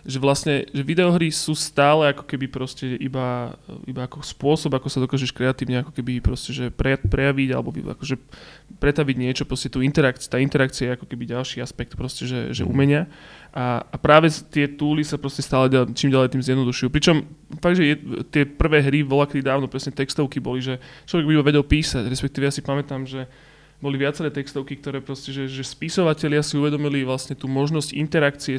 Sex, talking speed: male, 180 wpm